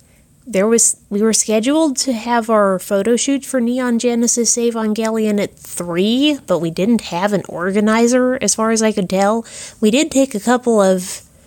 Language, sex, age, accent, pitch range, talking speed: English, female, 30-49, American, 175-220 Hz, 180 wpm